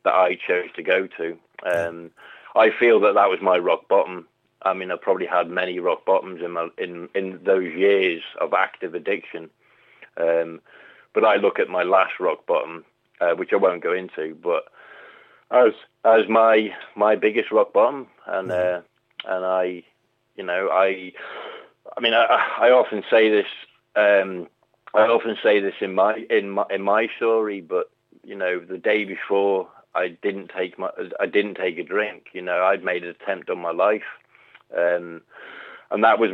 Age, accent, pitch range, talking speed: 30-49, British, 90-110 Hz, 180 wpm